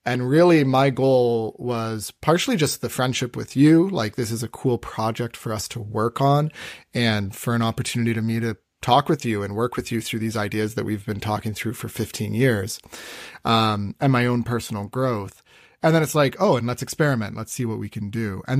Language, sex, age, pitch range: English, male, 30-49, 110-130 Hz